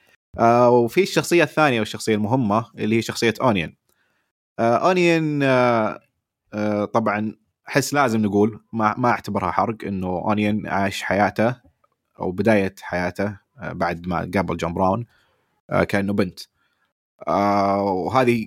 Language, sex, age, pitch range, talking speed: Arabic, male, 20-39, 100-125 Hz, 125 wpm